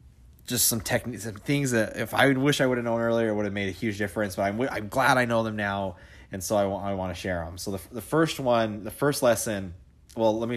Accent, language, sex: American, English, male